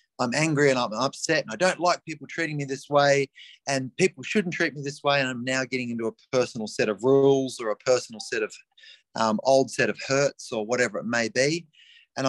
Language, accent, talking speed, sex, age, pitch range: English, Australian, 230 wpm, male, 30-49, 115-150 Hz